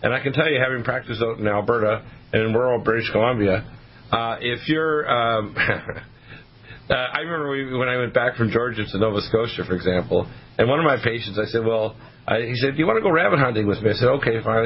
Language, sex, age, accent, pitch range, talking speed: English, male, 40-59, American, 110-135 Hz, 235 wpm